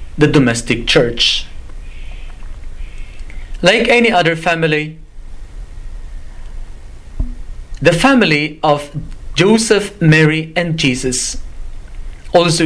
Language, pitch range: English, 130-175 Hz